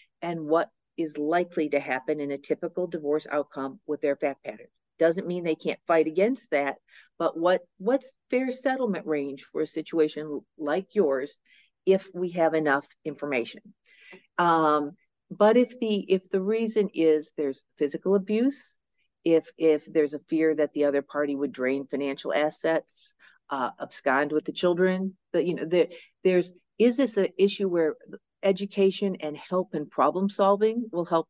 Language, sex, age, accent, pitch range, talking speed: English, female, 50-69, American, 150-195 Hz, 165 wpm